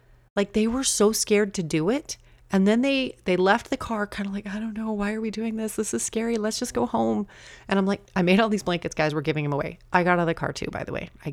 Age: 30-49